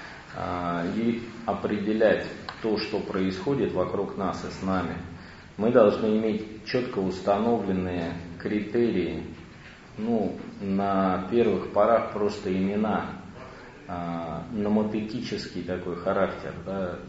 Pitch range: 90-105 Hz